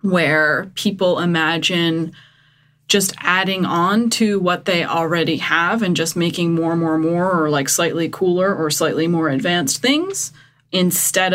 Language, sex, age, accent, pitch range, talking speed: English, female, 20-39, American, 155-195 Hz, 145 wpm